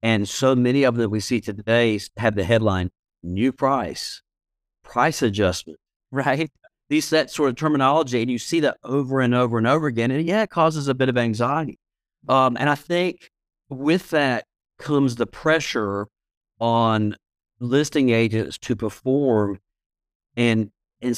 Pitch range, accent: 105-130 Hz, American